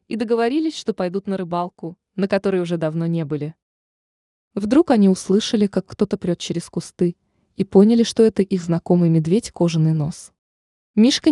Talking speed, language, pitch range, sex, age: 155 wpm, Russian, 165-220 Hz, female, 20-39